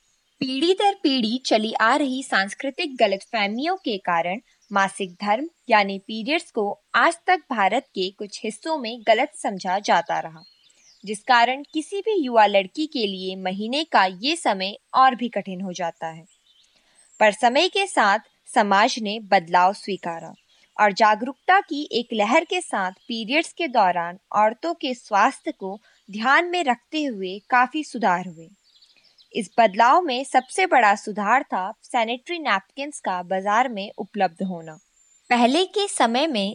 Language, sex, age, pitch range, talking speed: Hindi, female, 20-39, 195-285 Hz, 145 wpm